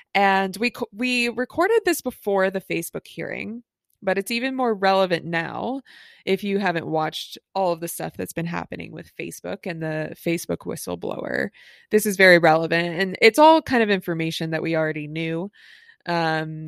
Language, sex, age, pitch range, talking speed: English, female, 20-39, 170-225 Hz, 170 wpm